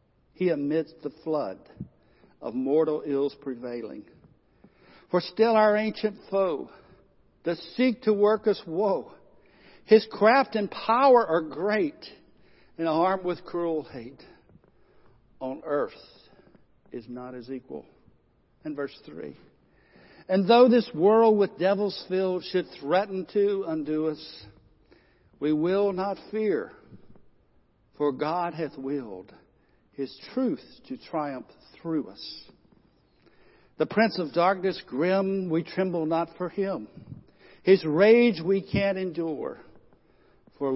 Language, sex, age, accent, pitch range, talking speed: English, male, 60-79, American, 155-205 Hz, 120 wpm